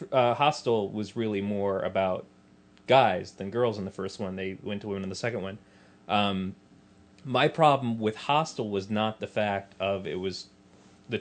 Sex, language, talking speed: male, English, 180 wpm